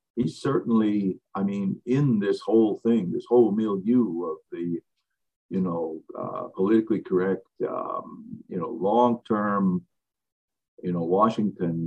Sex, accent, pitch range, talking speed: male, American, 105-160 Hz, 125 wpm